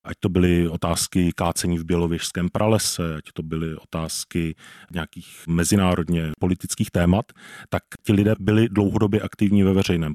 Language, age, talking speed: Czech, 40-59, 140 wpm